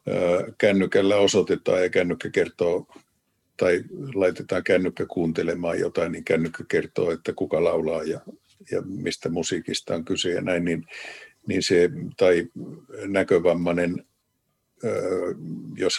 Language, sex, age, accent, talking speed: Finnish, male, 50-69, native, 115 wpm